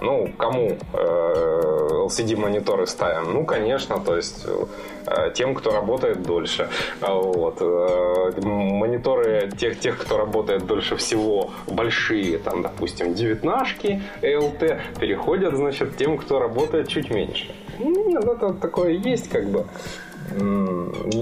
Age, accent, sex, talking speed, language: 20-39, native, male, 115 wpm, Ukrainian